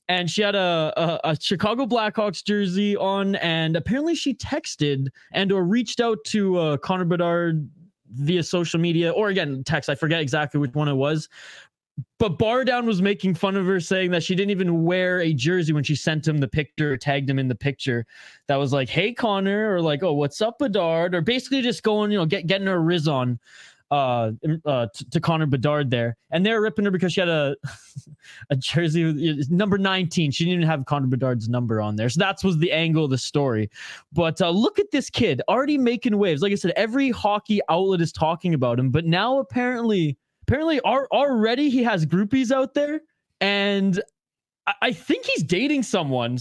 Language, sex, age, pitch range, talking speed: English, male, 20-39, 150-210 Hz, 200 wpm